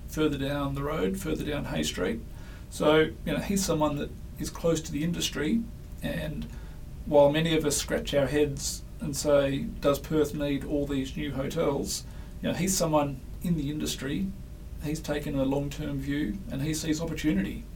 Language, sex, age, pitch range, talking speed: English, male, 40-59, 140-160 Hz, 175 wpm